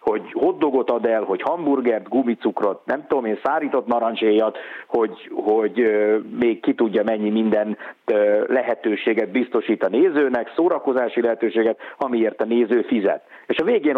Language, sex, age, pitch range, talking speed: Hungarian, male, 50-69, 110-165 Hz, 145 wpm